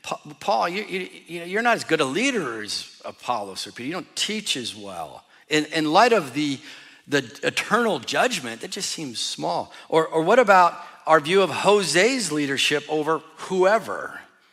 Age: 50-69